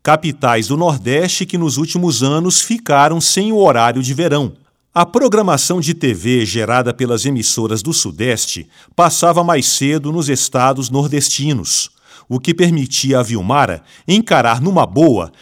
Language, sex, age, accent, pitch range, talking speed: Portuguese, male, 40-59, Brazilian, 125-170 Hz, 140 wpm